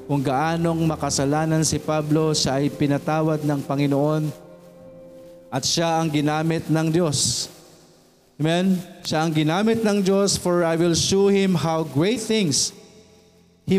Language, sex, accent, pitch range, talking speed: Filipino, male, native, 150-185 Hz, 135 wpm